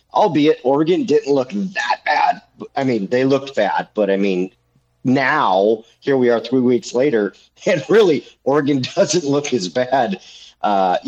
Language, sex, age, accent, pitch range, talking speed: English, male, 40-59, American, 100-120 Hz, 155 wpm